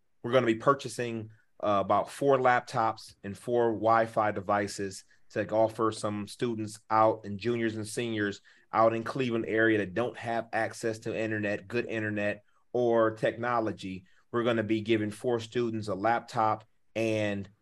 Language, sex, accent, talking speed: English, male, American, 155 wpm